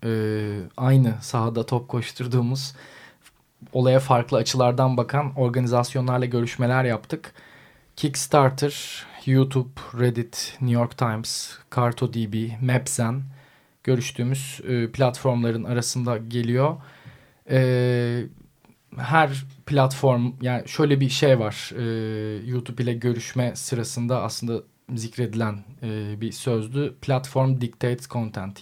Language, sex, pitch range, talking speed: Turkish, male, 120-135 Hz, 95 wpm